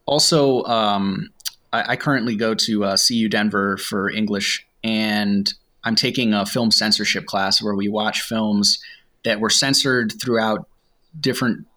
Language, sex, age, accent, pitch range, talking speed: English, male, 20-39, American, 100-120 Hz, 145 wpm